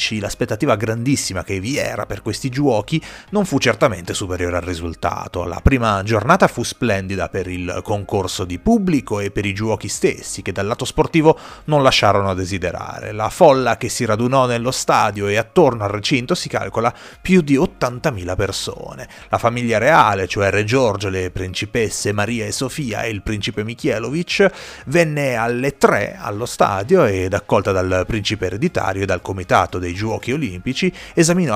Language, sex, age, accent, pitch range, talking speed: Italian, male, 30-49, native, 95-130 Hz, 165 wpm